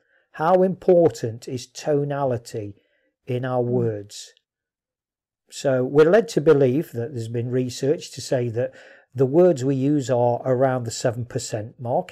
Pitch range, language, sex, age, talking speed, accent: 120-170 Hz, English, male, 50-69, 140 wpm, British